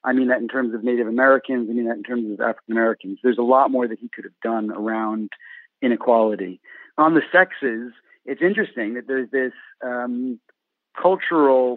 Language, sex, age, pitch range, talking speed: English, male, 40-59, 115-150 Hz, 190 wpm